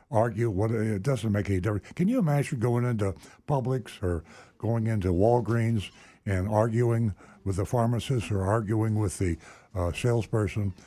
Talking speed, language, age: 155 wpm, English, 60-79